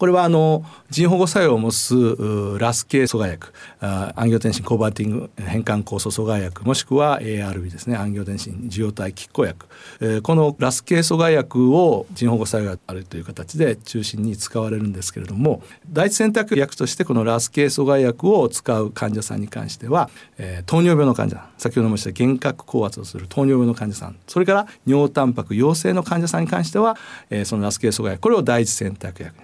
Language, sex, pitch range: Japanese, male, 105-170 Hz